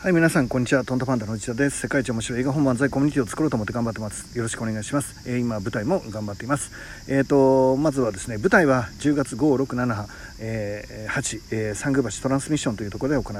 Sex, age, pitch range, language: male, 40-59, 105-135 Hz, Japanese